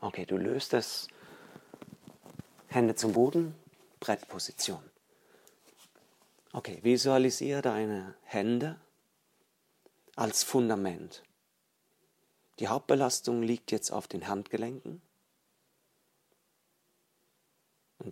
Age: 40-59